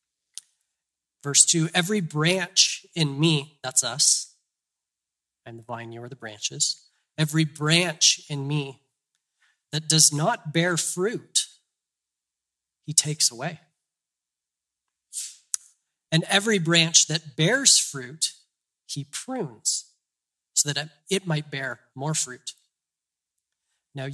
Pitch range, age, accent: 140-165 Hz, 30-49, American